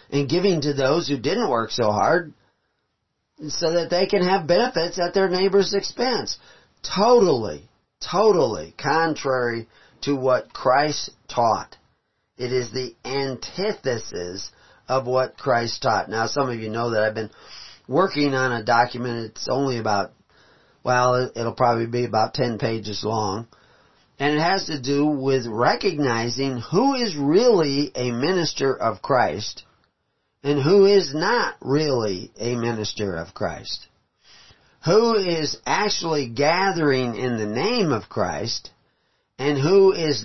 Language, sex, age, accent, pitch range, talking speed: English, male, 40-59, American, 115-175 Hz, 135 wpm